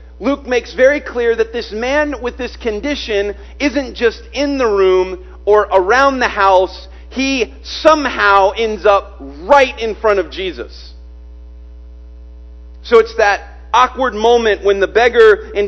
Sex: male